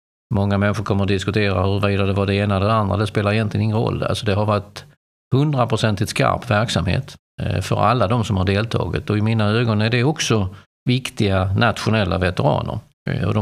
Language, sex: Swedish, male